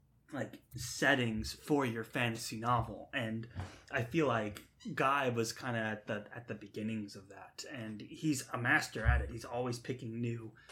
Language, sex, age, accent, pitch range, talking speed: English, male, 20-39, American, 110-125 Hz, 175 wpm